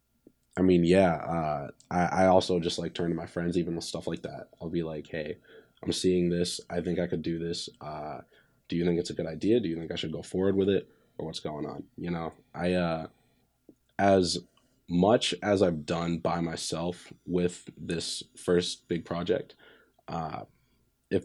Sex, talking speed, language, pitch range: male, 200 wpm, English, 85-95 Hz